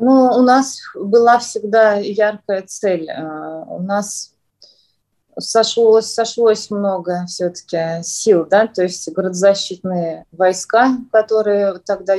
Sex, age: female, 20-39